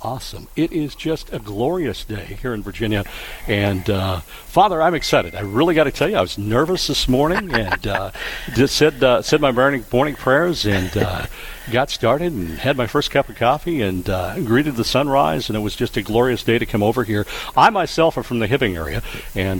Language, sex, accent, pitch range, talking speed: English, male, American, 100-125 Hz, 215 wpm